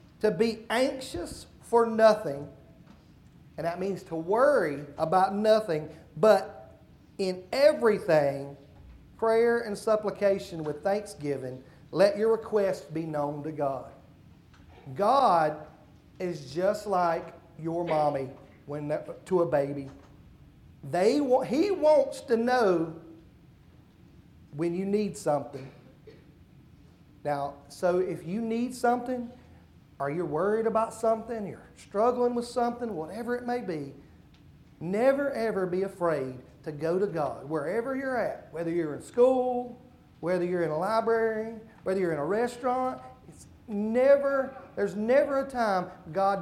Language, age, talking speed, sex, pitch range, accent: English, 40-59, 125 wpm, male, 160-240 Hz, American